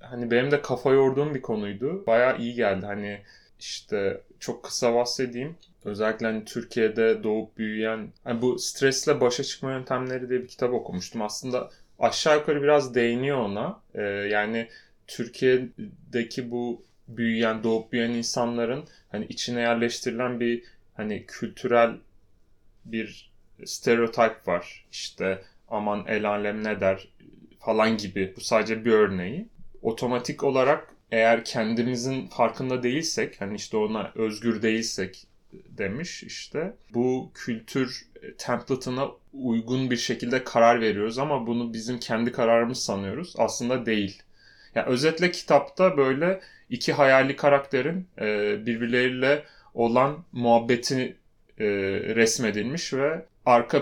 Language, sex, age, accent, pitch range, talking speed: Turkish, male, 30-49, native, 110-130 Hz, 120 wpm